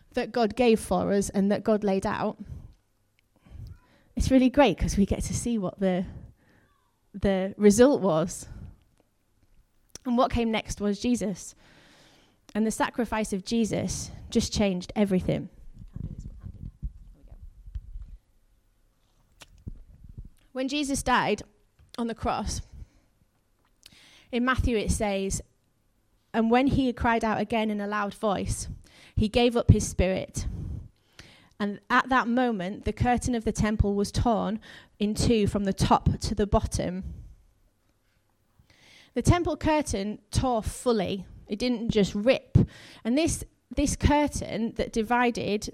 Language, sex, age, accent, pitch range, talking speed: English, female, 20-39, British, 180-235 Hz, 125 wpm